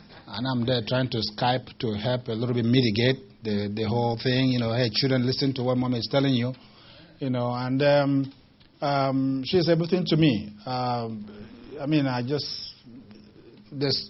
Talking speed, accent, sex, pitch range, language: 180 wpm, Nigerian, male, 115-130 Hz, English